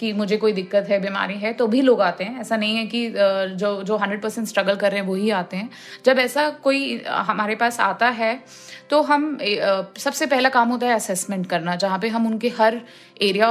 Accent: native